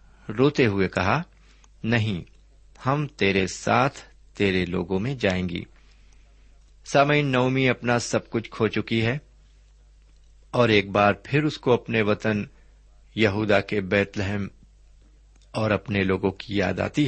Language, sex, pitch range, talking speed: Urdu, male, 95-125 Hz, 135 wpm